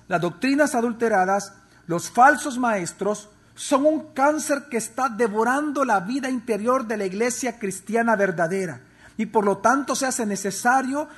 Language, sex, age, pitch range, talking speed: Spanish, male, 40-59, 195-260 Hz, 145 wpm